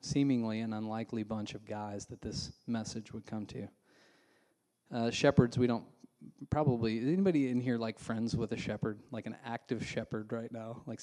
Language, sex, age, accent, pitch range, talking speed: English, male, 20-39, American, 110-130 Hz, 180 wpm